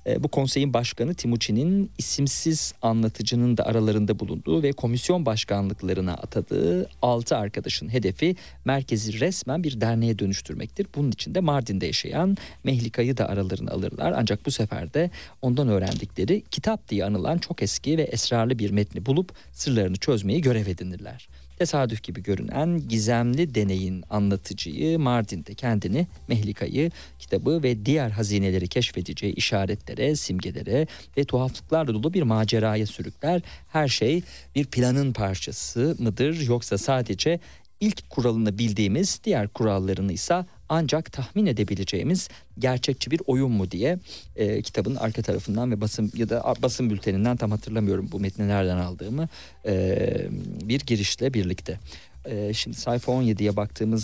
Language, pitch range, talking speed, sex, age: Turkish, 100-135 Hz, 130 wpm, male, 40-59